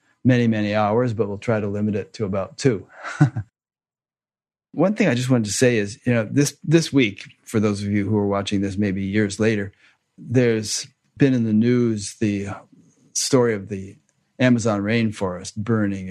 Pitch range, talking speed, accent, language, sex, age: 105-120 Hz, 180 wpm, American, English, male, 40-59